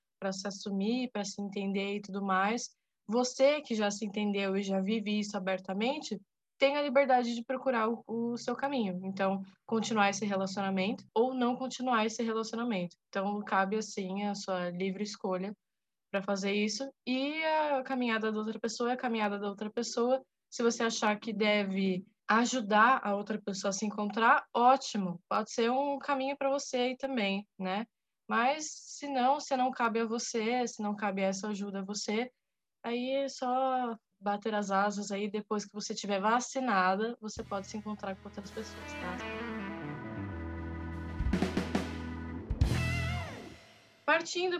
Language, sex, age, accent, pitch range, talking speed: Portuguese, female, 10-29, Brazilian, 200-255 Hz, 155 wpm